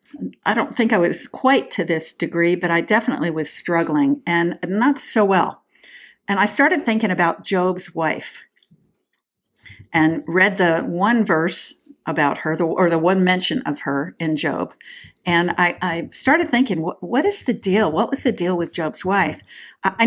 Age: 50-69